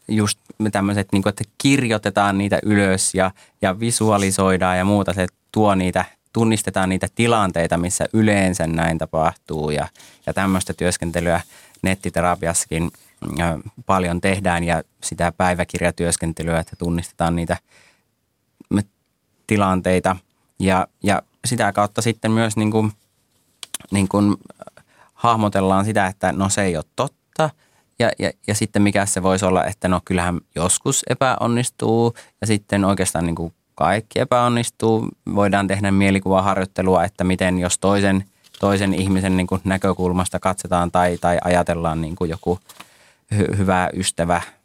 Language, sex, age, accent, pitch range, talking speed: Finnish, male, 20-39, native, 85-105 Hz, 120 wpm